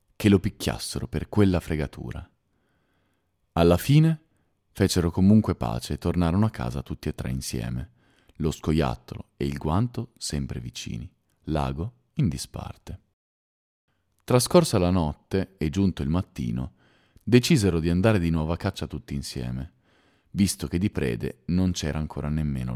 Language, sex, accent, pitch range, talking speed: Italian, male, native, 75-100 Hz, 140 wpm